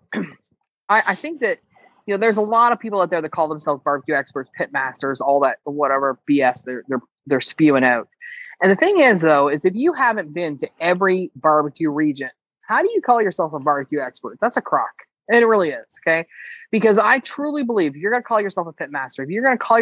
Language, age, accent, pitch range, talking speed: English, 30-49, American, 150-210 Hz, 235 wpm